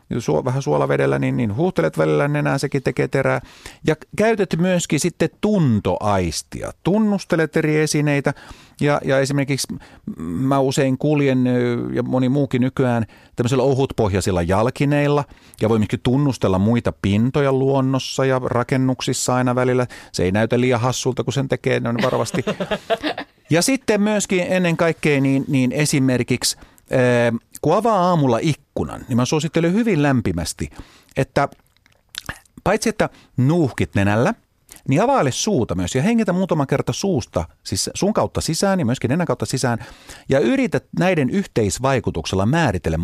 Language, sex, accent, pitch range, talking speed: Finnish, male, native, 120-155 Hz, 135 wpm